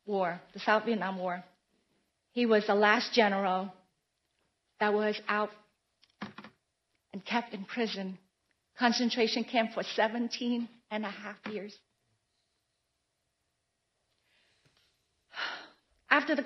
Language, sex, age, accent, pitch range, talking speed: English, female, 40-59, American, 210-255 Hz, 100 wpm